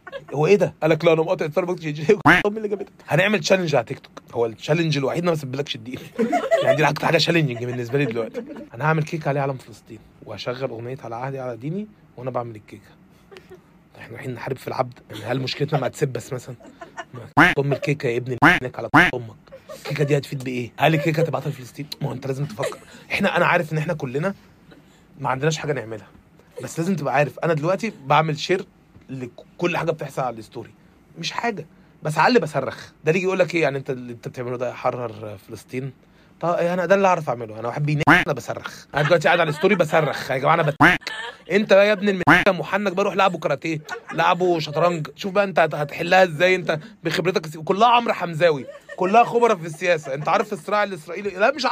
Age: 30-49